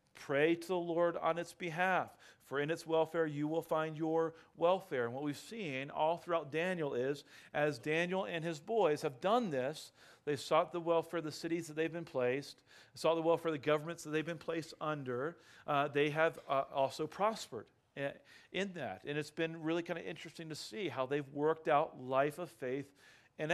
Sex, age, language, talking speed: male, 40-59, English, 200 wpm